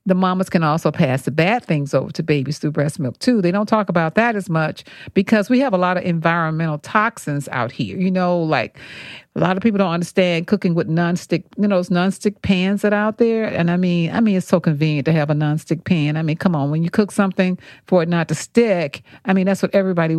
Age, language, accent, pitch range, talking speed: 50-69, English, American, 160-200 Hz, 250 wpm